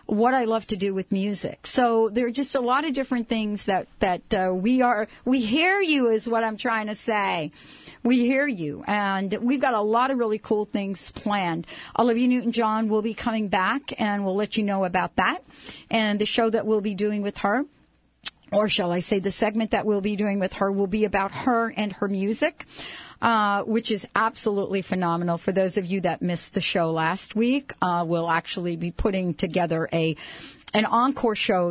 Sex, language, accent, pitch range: female, English, American, 175-225 Hz